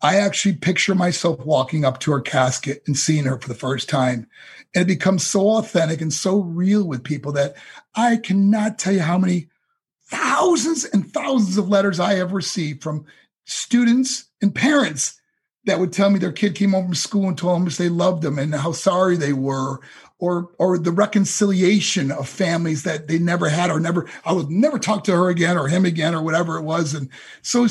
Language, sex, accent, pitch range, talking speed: English, male, American, 155-220 Hz, 205 wpm